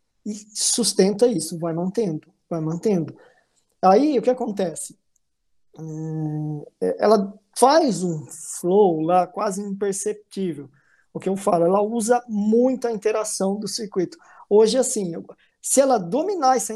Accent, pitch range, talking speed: Brazilian, 180-225 Hz, 130 wpm